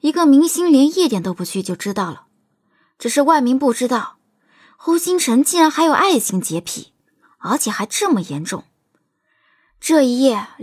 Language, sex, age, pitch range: Chinese, female, 20-39, 195-275 Hz